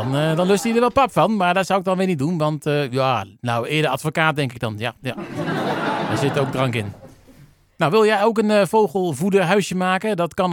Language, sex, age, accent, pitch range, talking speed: Dutch, male, 40-59, Dutch, 135-195 Hz, 245 wpm